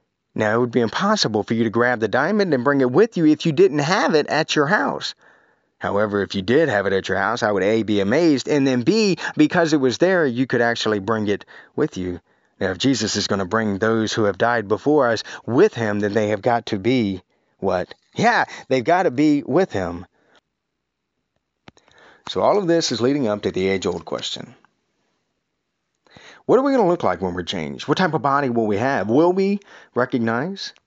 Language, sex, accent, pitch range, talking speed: English, male, American, 105-155 Hz, 220 wpm